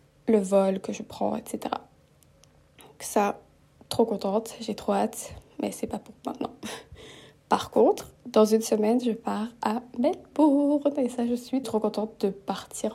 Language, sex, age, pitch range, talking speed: French, female, 20-39, 205-245 Hz, 160 wpm